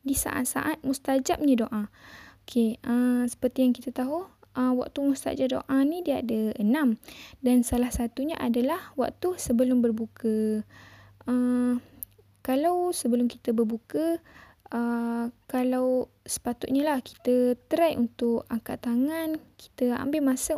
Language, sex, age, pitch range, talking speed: Malay, female, 10-29, 245-285 Hz, 125 wpm